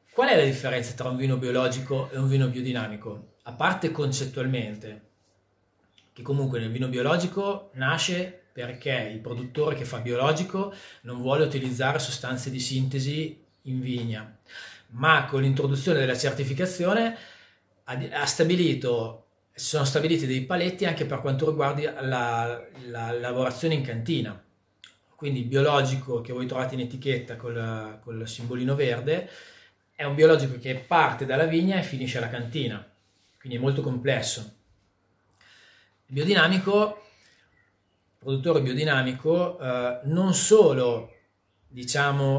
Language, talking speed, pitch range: Italian, 125 wpm, 120-155 Hz